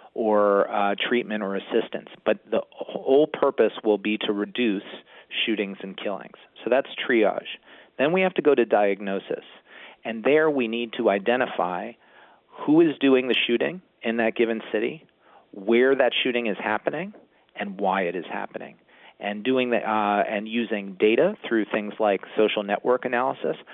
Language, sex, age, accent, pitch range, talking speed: English, male, 40-59, American, 105-125 Hz, 160 wpm